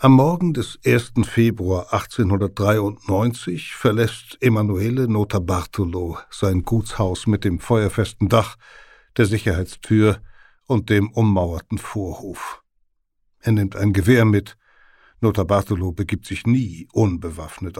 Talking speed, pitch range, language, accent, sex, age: 110 wpm, 100-120 Hz, German, German, male, 60-79